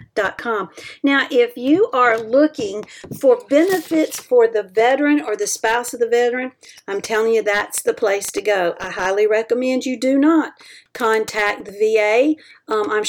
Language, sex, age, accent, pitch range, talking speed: English, female, 50-69, American, 200-275 Hz, 165 wpm